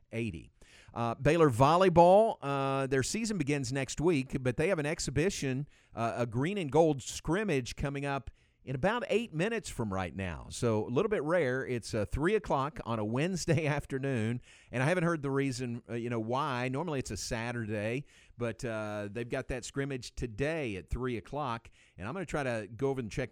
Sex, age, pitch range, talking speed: male, 50-69, 105-135 Hz, 200 wpm